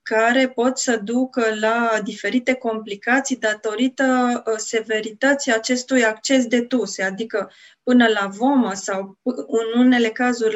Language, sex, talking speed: Romanian, female, 120 wpm